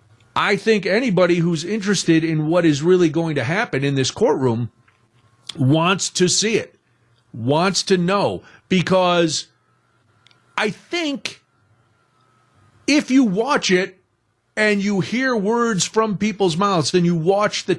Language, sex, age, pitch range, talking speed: English, male, 50-69, 140-200 Hz, 135 wpm